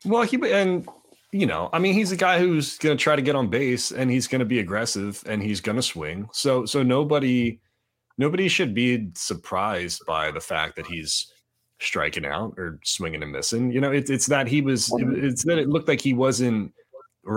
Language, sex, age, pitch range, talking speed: English, male, 30-49, 90-135 Hz, 205 wpm